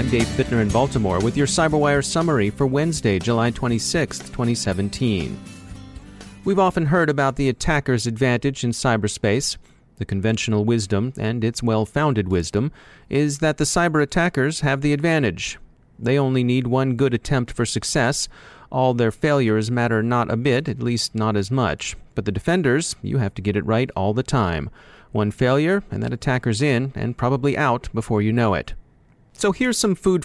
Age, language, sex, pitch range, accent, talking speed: 40-59, English, male, 110-145 Hz, American, 175 wpm